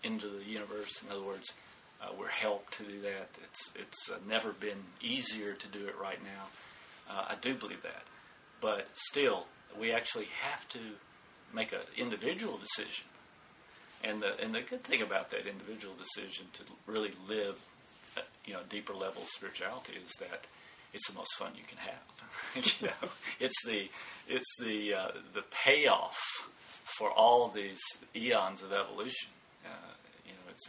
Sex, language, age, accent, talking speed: male, English, 40-59, American, 170 wpm